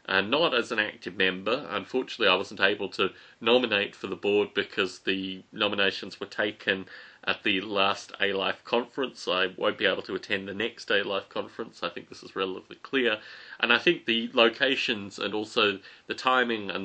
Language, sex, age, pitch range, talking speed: English, male, 30-49, 100-115 Hz, 190 wpm